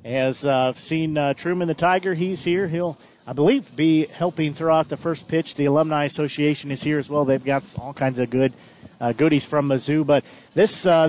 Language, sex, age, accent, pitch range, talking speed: English, male, 40-59, American, 150-175 Hz, 205 wpm